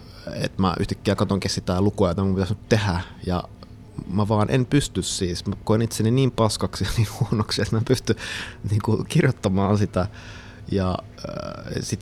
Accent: native